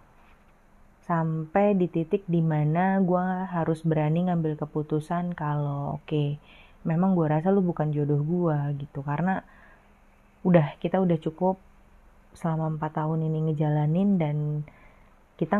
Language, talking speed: Indonesian, 125 wpm